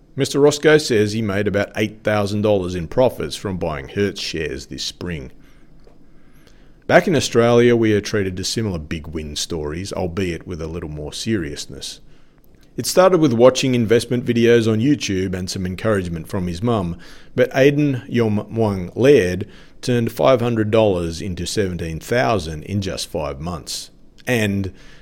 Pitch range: 90-120 Hz